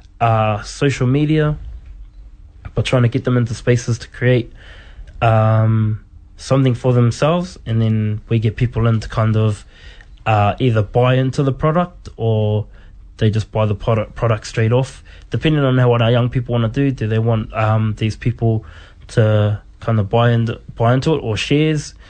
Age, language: 20-39, English